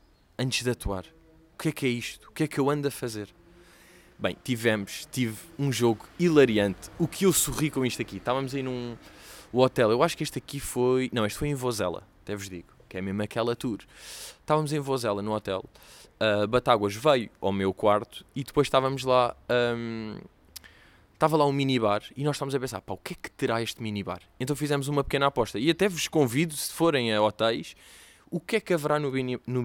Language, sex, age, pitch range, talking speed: Portuguese, male, 20-39, 105-140 Hz, 210 wpm